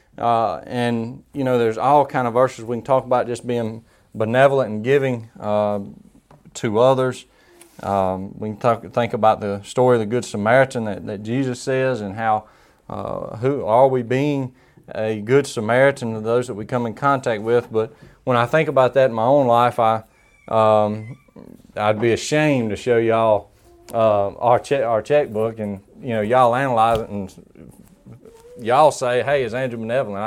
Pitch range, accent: 110-130 Hz, American